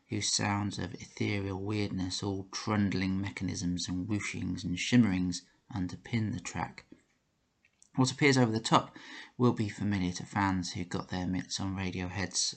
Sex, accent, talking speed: male, British, 150 wpm